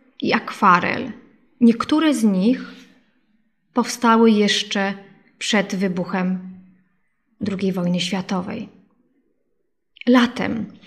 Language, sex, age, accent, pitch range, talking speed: Polish, female, 20-39, native, 195-255 Hz, 70 wpm